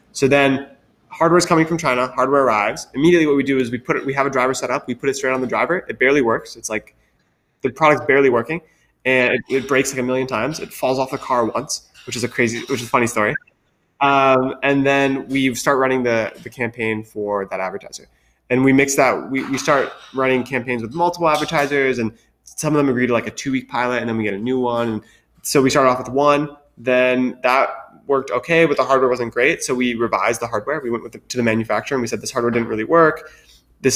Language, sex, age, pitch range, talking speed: English, male, 20-39, 115-135 Hz, 245 wpm